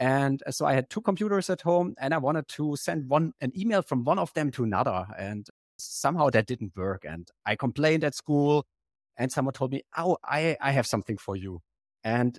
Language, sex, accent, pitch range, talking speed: English, male, German, 110-140 Hz, 215 wpm